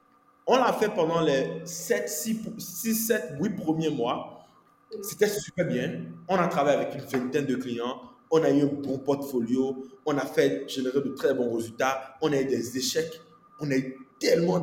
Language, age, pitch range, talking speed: French, 20-39, 130-175 Hz, 190 wpm